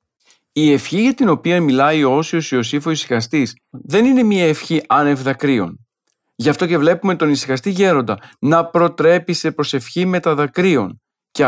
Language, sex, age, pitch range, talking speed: Greek, male, 40-59, 130-175 Hz, 165 wpm